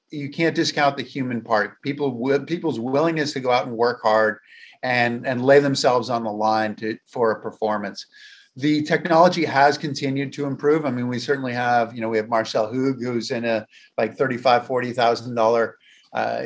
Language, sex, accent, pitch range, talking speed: English, male, American, 120-165 Hz, 175 wpm